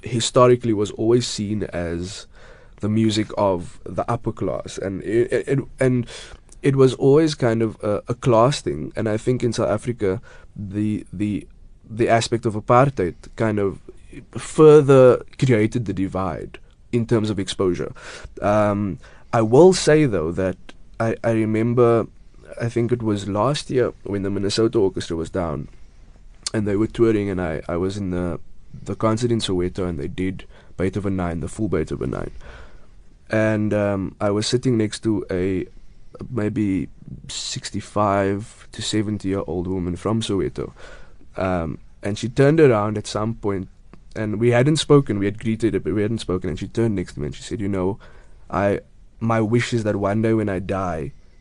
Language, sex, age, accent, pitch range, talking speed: English, male, 20-39, South African, 95-115 Hz, 170 wpm